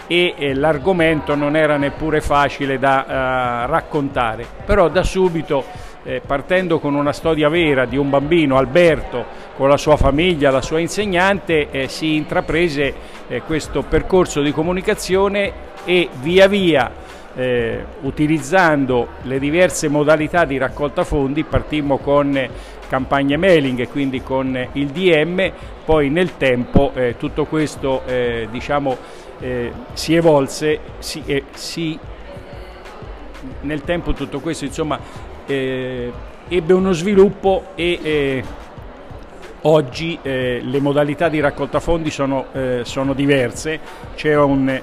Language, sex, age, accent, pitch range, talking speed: Italian, male, 50-69, native, 130-155 Hz, 125 wpm